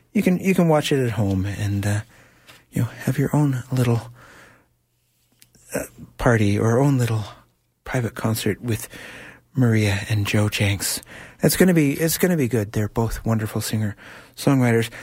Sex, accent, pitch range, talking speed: male, American, 105-145 Hz, 160 wpm